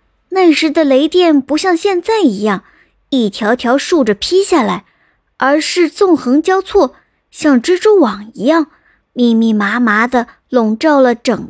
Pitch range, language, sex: 235-340 Hz, Chinese, male